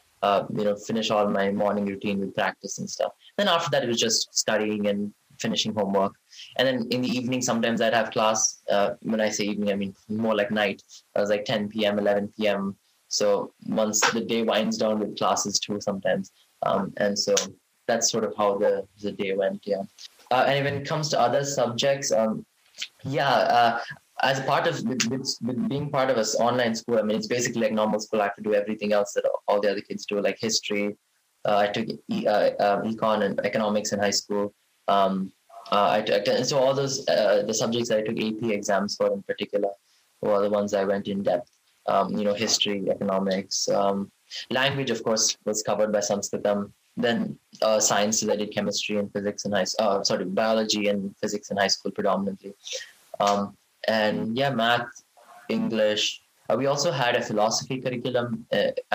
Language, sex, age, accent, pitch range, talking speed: Hindi, male, 20-39, native, 100-120 Hz, 195 wpm